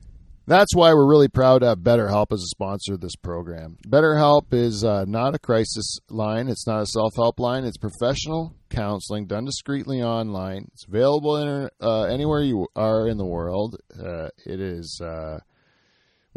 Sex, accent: male, American